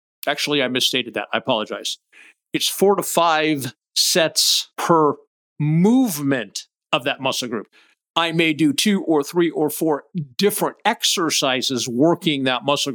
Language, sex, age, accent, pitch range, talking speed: English, male, 50-69, American, 130-175 Hz, 140 wpm